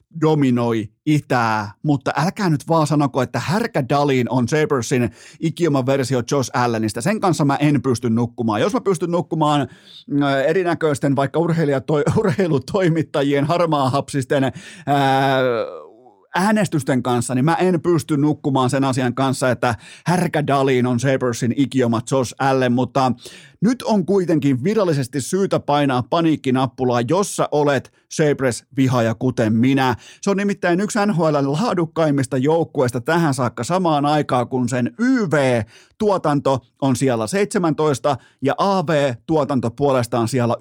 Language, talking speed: Finnish, 125 wpm